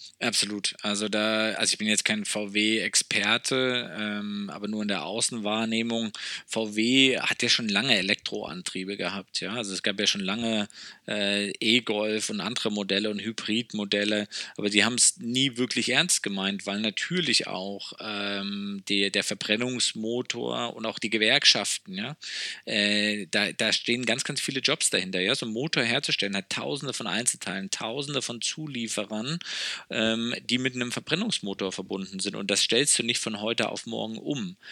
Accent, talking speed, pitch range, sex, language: German, 160 wpm, 100-120 Hz, male, German